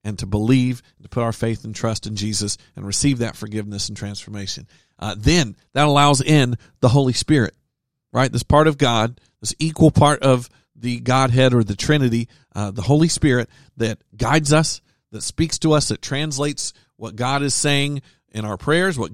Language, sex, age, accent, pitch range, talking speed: English, male, 40-59, American, 110-140 Hz, 190 wpm